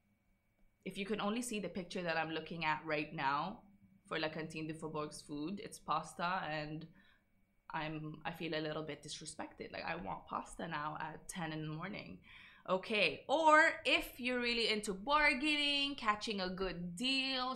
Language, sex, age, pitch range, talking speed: Arabic, female, 20-39, 160-210 Hz, 170 wpm